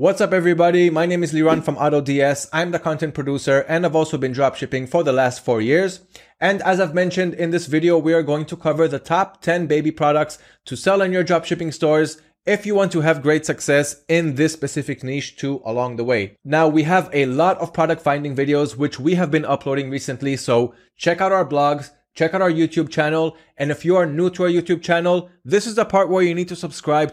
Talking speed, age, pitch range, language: 230 wpm, 20-39, 145-175 Hz, English